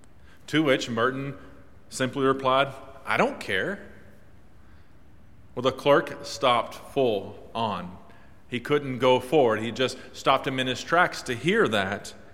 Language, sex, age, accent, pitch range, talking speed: English, male, 40-59, American, 110-140 Hz, 135 wpm